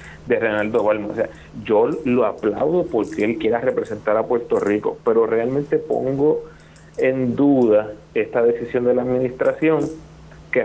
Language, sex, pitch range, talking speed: Spanish, male, 120-185 Hz, 145 wpm